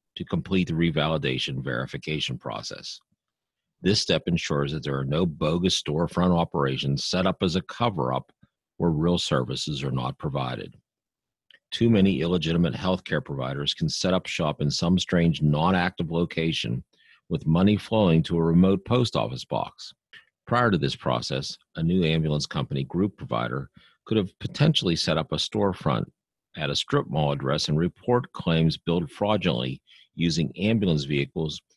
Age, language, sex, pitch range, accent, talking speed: 40-59, English, male, 75-95 Hz, American, 155 wpm